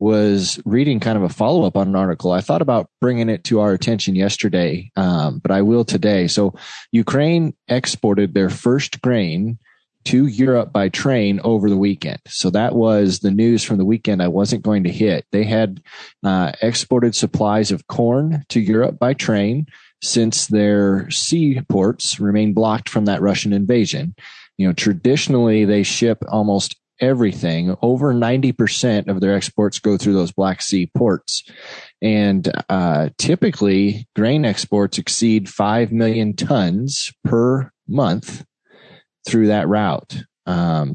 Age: 20-39